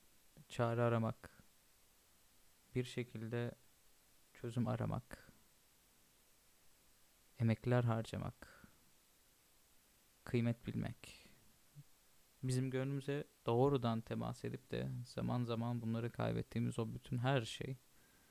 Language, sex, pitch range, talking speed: Turkish, male, 115-130 Hz, 80 wpm